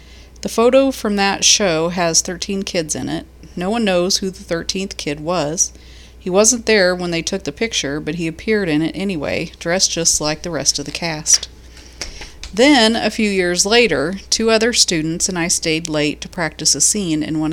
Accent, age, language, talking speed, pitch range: American, 40-59, English, 200 wpm, 150-195 Hz